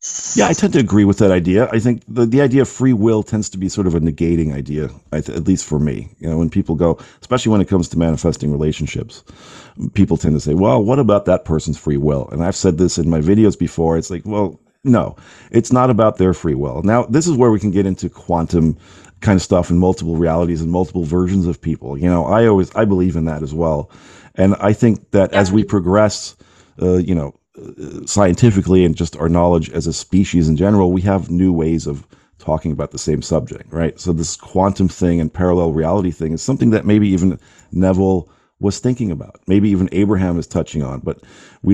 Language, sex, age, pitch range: English, male, 50-69, 80-100 Hz